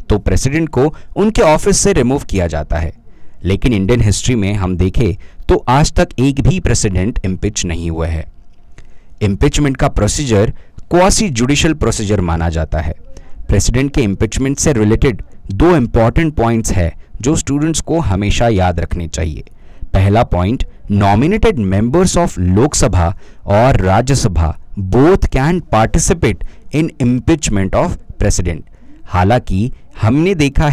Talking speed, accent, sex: 115 wpm, native, male